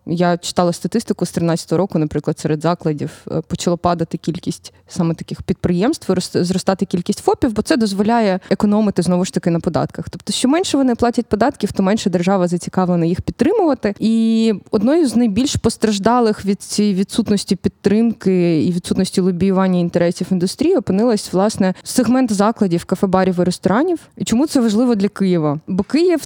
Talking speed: 160 wpm